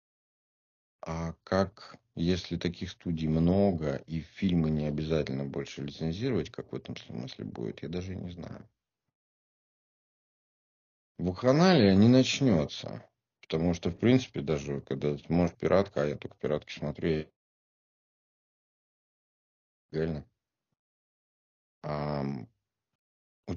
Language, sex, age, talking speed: Russian, male, 50-69, 105 wpm